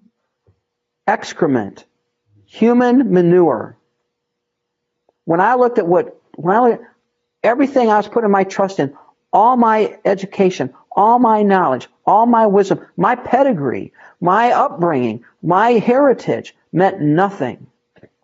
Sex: male